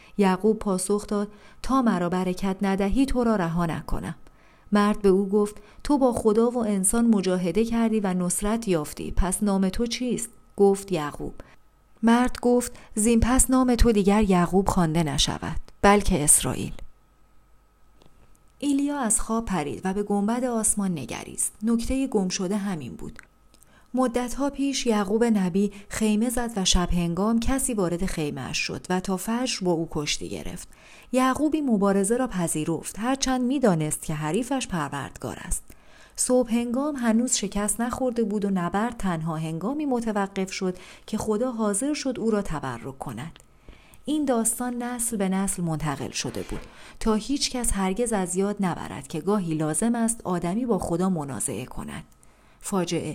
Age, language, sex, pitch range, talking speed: 40-59, Persian, female, 185-235 Hz, 150 wpm